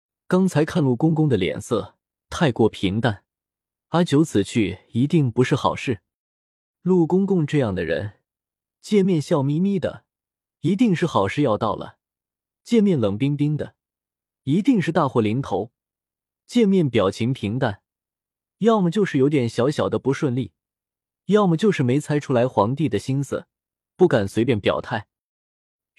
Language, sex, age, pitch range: Chinese, male, 20-39, 105-155 Hz